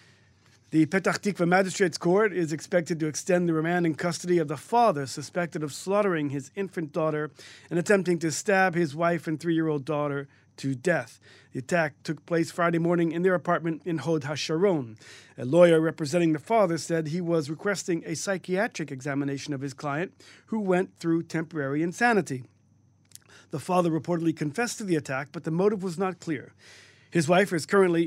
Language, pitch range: English, 145-190 Hz